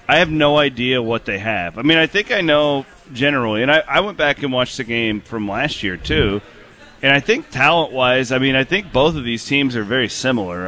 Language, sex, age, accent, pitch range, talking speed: English, male, 30-49, American, 120-145 Hz, 240 wpm